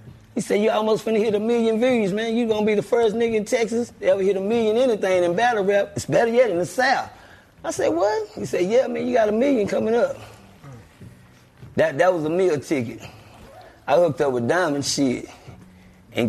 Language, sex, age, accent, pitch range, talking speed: English, male, 30-49, American, 125-170 Hz, 215 wpm